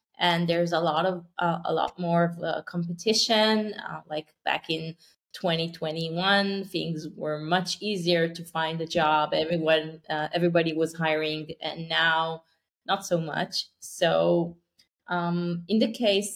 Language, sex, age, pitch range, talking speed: English, female, 20-39, 160-195 Hz, 145 wpm